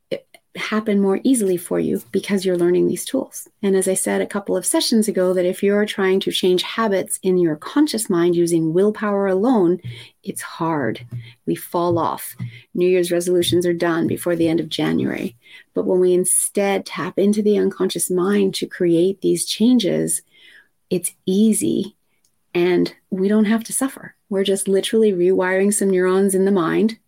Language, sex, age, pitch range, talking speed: English, female, 30-49, 175-220 Hz, 175 wpm